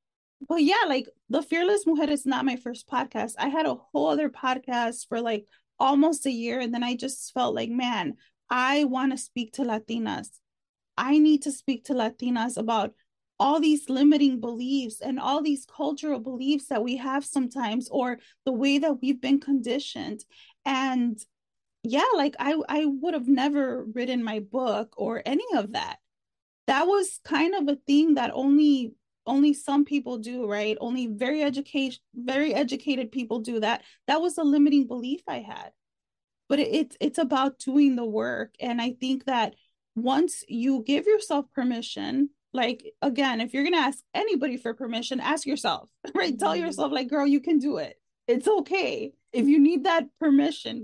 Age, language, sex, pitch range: 30-49, English, female, 245-295 Hz